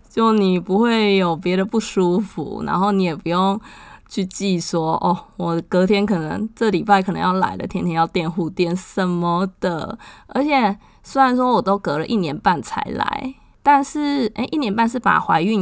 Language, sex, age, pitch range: Chinese, female, 20-39, 185-240 Hz